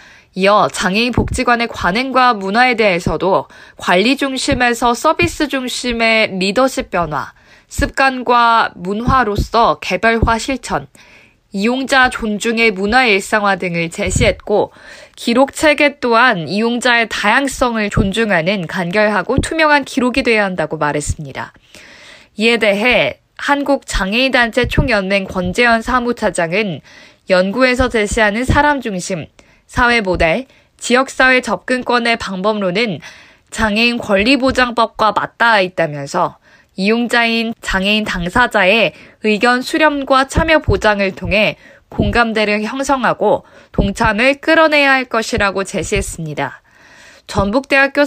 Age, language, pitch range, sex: 20-39, Korean, 195-255 Hz, female